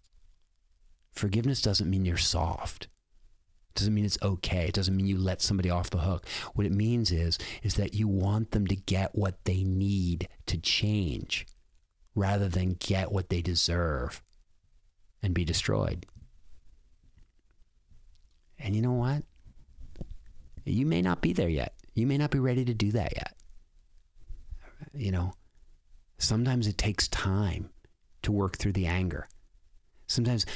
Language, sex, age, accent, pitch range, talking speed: English, male, 50-69, American, 85-105 Hz, 145 wpm